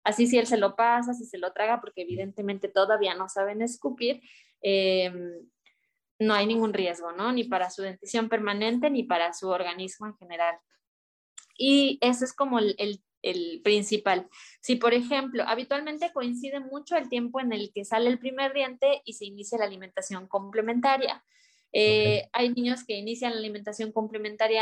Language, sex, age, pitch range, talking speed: Spanish, female, 20-39, 195-245 Hz, 170 wpm